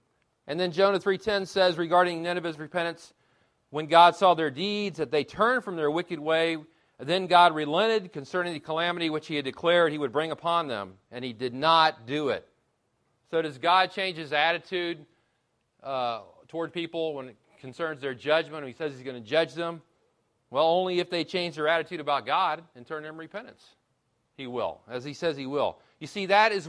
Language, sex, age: English, male, 40-59